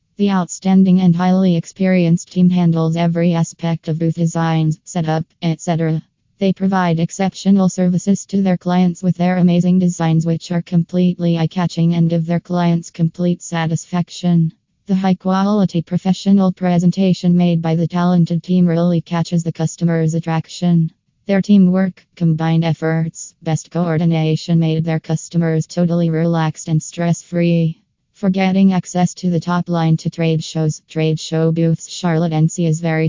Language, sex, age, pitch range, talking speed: English, female, 20-39, 165-180 Hz, 145 wpm